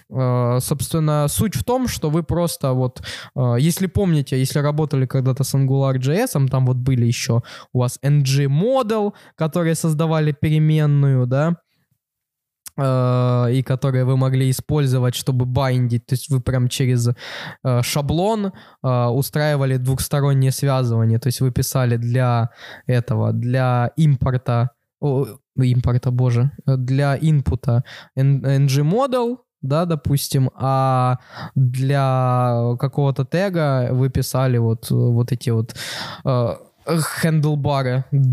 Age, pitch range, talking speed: 20-39, 125-145 Hz, 115 wpm